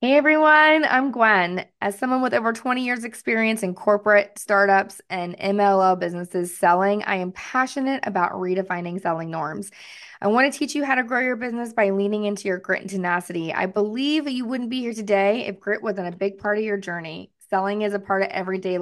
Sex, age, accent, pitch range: female, 20-39, American, 190-235 Hz